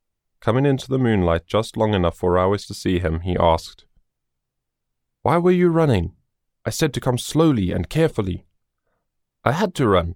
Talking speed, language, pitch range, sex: 170 wpm, English, 90-120 Hz, male